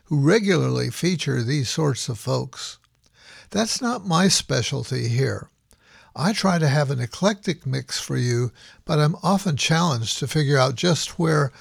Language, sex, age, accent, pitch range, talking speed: English, male, 60-79, American, 135-180 Hz, 155 wpm